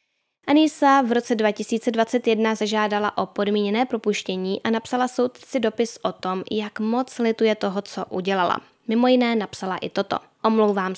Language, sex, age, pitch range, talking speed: Czech, female, 10-29, 195-235 Hz, 140 wpm